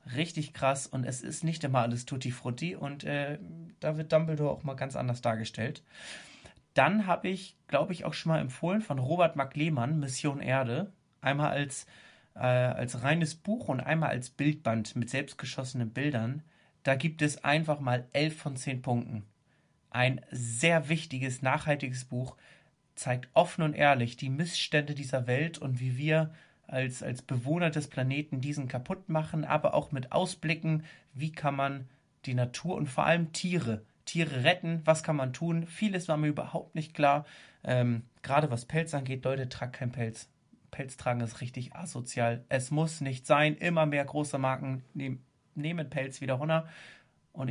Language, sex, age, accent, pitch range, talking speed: German, male, 30-49, German, 130-160 Hz, 165 wpm